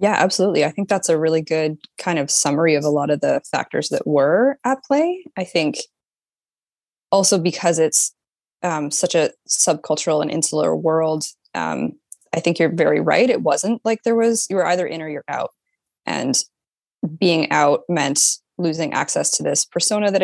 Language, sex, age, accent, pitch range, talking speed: English, female, 20-39, American, 160-200 Hz, 180 wpm